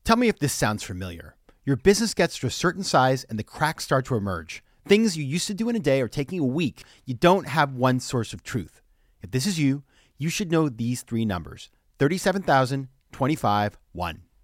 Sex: male